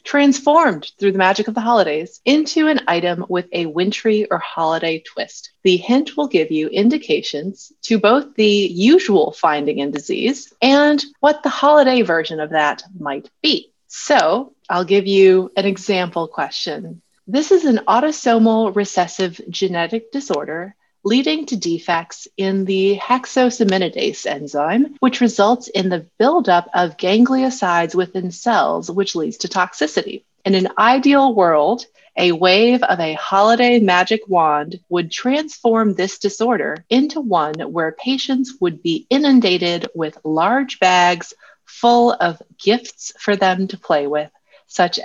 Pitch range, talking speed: 175-250 Hz, 140 wpm